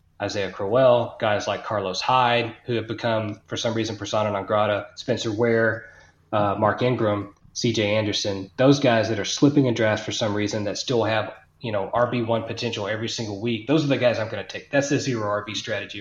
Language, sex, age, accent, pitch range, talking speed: English, male, 30-49, American, 105-135 Hz, 205 wpm